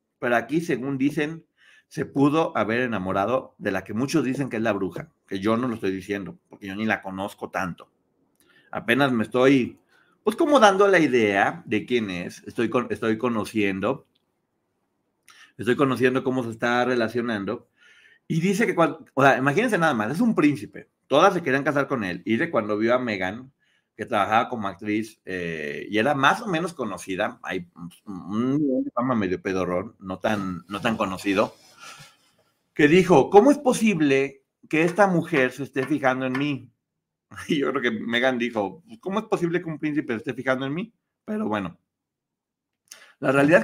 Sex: male